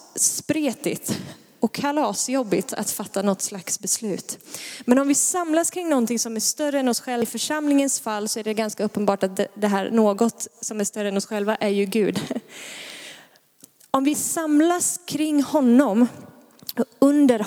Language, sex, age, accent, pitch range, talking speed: Swedish, female, 20-39, native, 210-260 Hz, 160 wpm